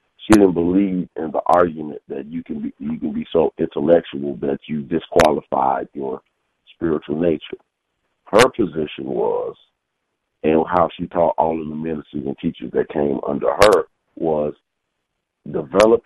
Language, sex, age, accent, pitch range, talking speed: English, male, 50-69, American, 85-110 Hz, 140 wpm